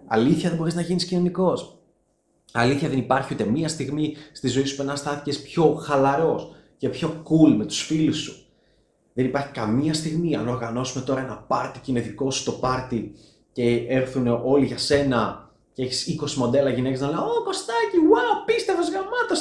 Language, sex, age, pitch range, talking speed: Greek, male, 30-49, 120-160 Hz, 180 wpm